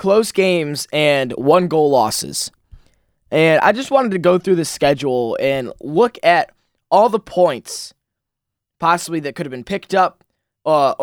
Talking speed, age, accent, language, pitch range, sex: 150 wpm, 20-39, American, English, 135-180 Hz, male